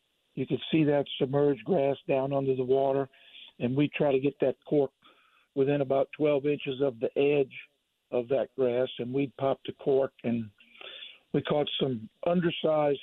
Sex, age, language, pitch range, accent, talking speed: male, 50-69, English, 130-150 Hz, American, 170 wpm